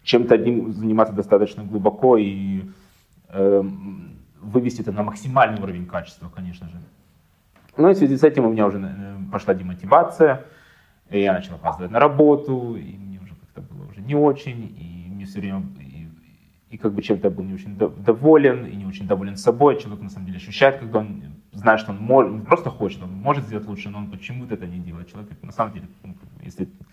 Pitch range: 95-130 Hz